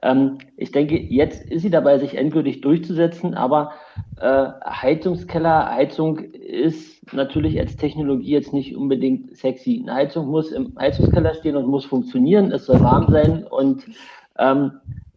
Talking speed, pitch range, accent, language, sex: 145 wpm, 130-165 Hz, German, German, male